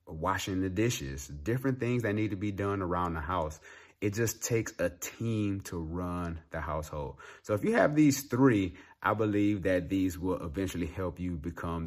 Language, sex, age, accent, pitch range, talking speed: English, male, 30-49, American, 80-105 Hz, 185 wpm